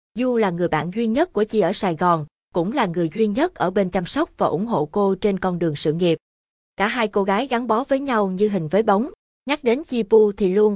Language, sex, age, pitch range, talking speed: Vietnamese, female, 20-39, 180-225 Hz, 260 wpm